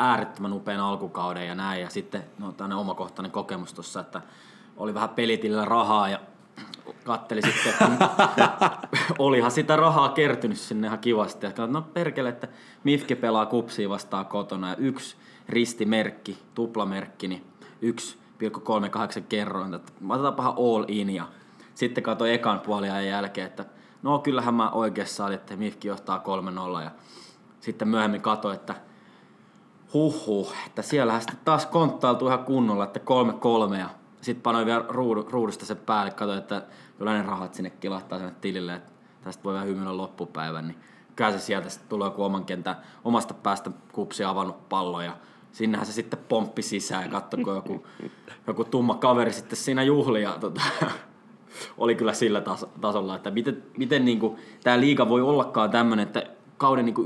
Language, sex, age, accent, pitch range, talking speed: Finnish, male, 20-39, native, 100-125 Hz, 160 wpm